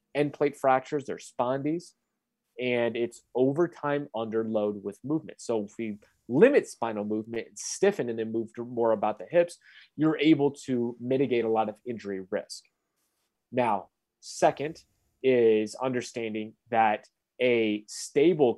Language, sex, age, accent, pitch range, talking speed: English, male, 30-49, American, 110-135 Hz, 140 wpm